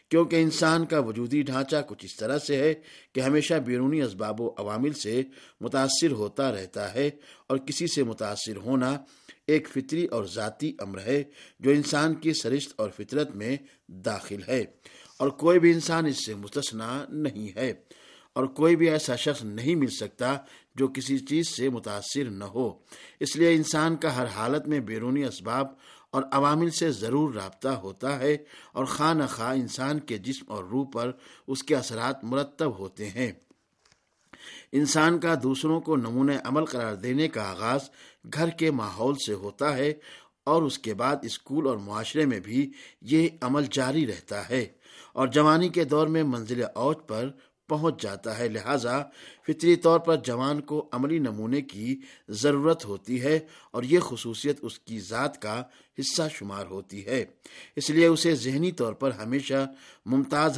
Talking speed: 165 wpm